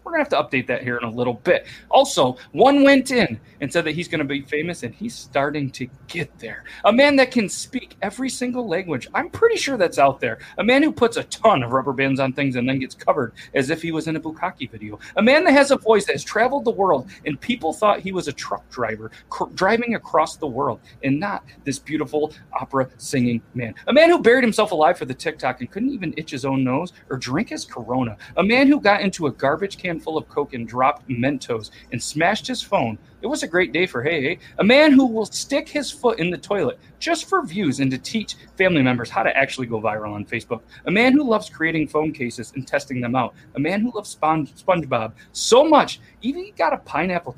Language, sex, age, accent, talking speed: English, male, 30-49, American, 245 wpm